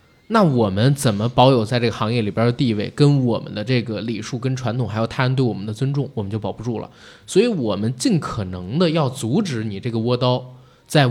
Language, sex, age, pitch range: Chinese, male, 20-39, 115-165 Hz